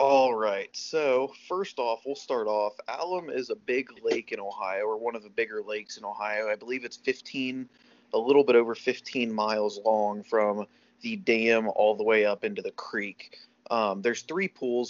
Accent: American